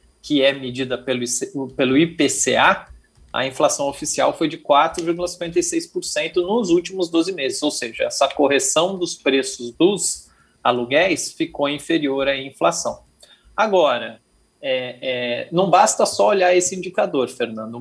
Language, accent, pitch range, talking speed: Portuguese, Brazilian, 125-170 Hz, 130 wpm